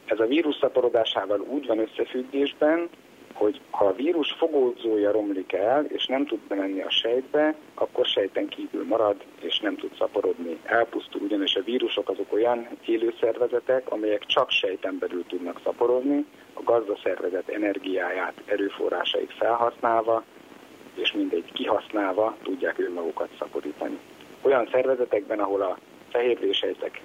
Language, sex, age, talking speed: Hungarian, male, 50-69, 125 wpm